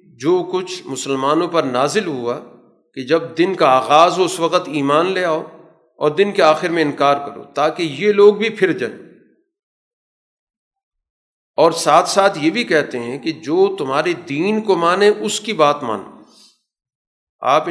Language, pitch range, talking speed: Urdu, 140-185 Hz, 165 wpm